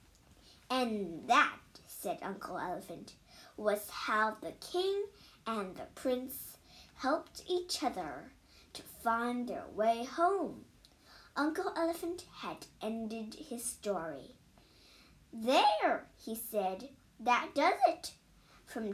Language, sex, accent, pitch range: Chinese, male, American, 220-295 Hz